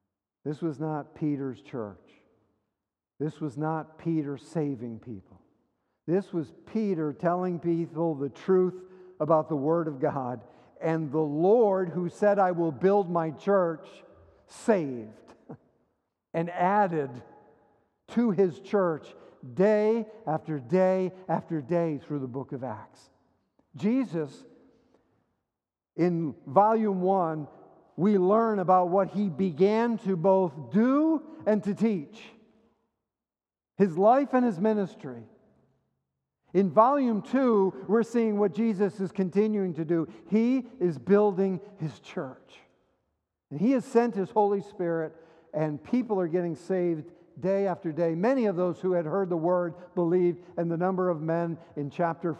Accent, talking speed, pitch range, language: American, 135 wpm, 150-195 Hz, English